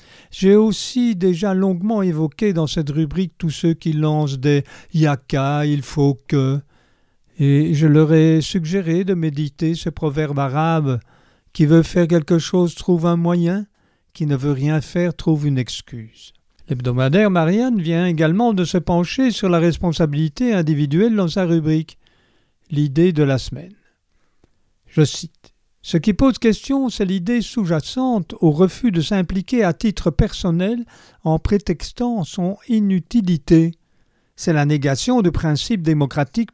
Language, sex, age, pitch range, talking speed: French, male, 50-69, 145-190 Hz, 145 wpm